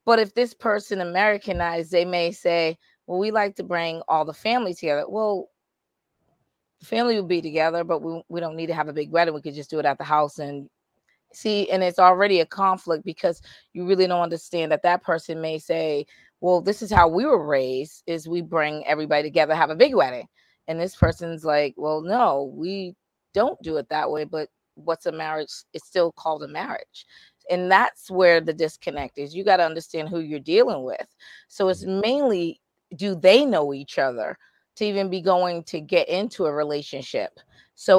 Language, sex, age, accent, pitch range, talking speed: English, female, 30-49, American, 160-200 Hz, 200 wpm